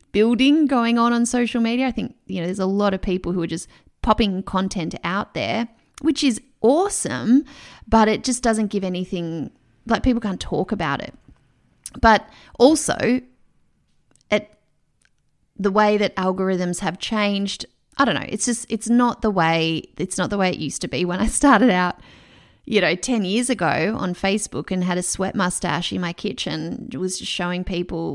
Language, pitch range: English, 180-235 Hz